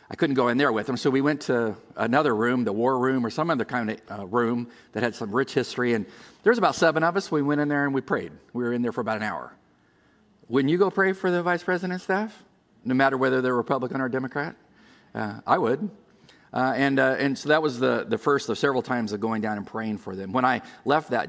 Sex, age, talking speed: male, 50-69, 260 wpm